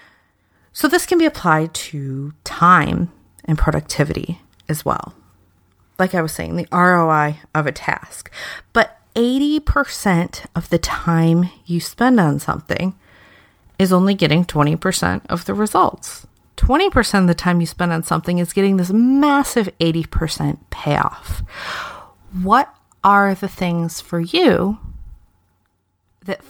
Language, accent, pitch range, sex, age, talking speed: English, American, 155-195 Hz, female, 30-49, 130 wpm